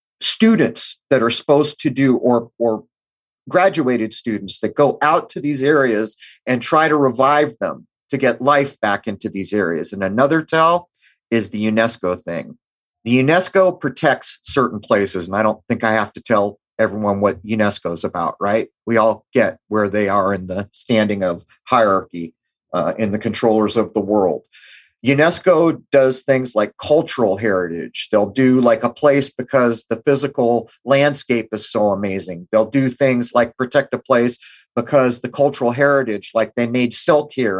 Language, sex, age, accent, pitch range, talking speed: English, male, 40-59, American, 105-135 Hz, 170 wpm